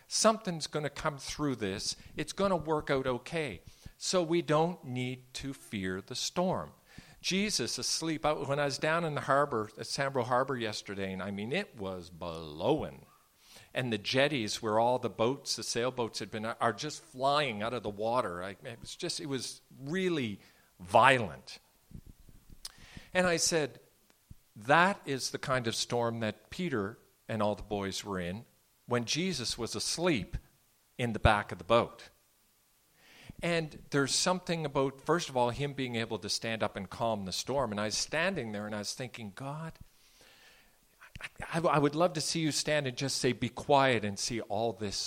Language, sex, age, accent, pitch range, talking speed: English, male, 50-69, American, 110-150 Hz, 180 wpm